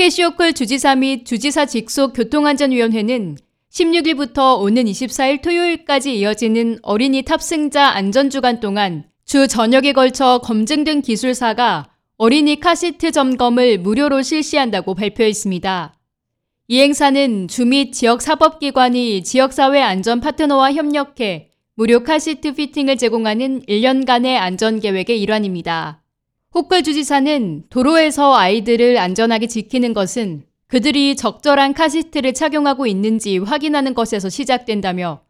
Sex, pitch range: female, 215-280 Hz